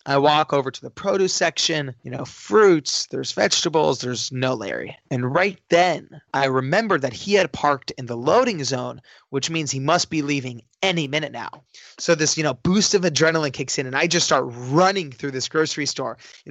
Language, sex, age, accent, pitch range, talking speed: English, male, 20-39, American, 130-160 Hz, 205 wpm